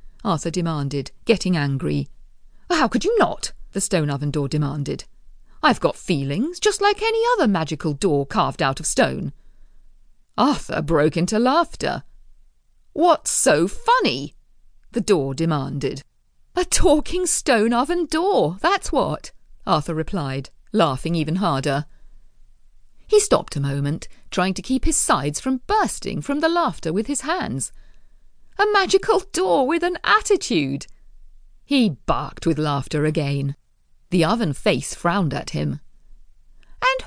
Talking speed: 135 wpm